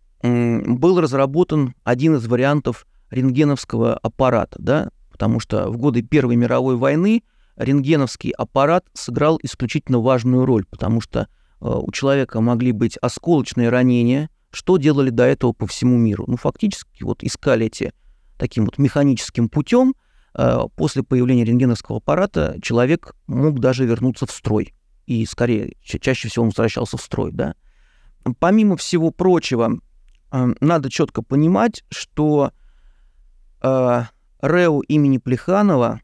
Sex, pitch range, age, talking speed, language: male, 120-155 Hz, 30-49, 125 wpm, Russian